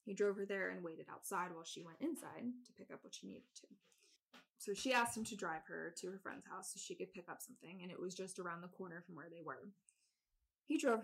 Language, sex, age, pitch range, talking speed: English, female, 20-39, 175-220 Hz, 260 wpm